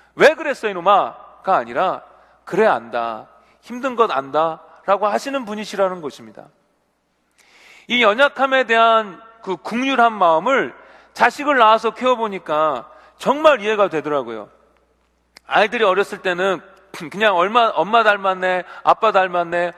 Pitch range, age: 190-260 Hz, 40-59